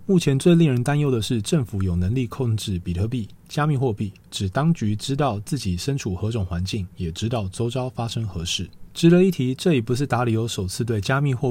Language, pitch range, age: Chinese, 95-140 Hz, 20-39